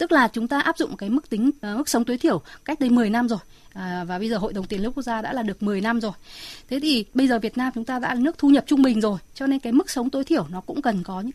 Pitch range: 210-285 Hz